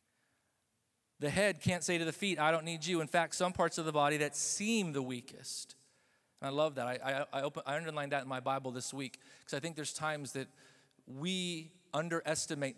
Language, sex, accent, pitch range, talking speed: English, male, American, 125-155 Hz, 205 wpm